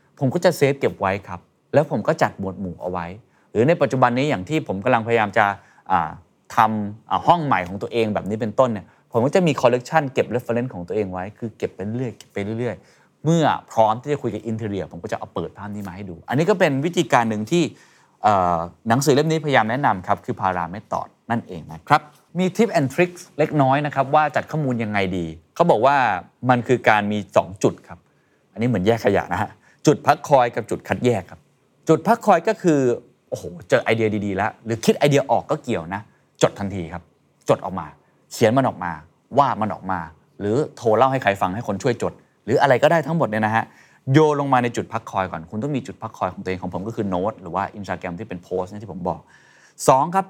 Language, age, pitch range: Thai, 20-39, 100-140 Hz